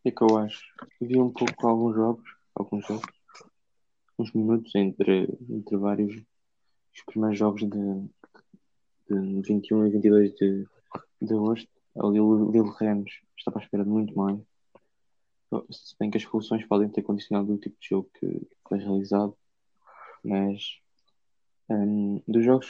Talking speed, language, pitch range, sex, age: 155 wpm, Portuguese, 100-110 Hz, male, 20-39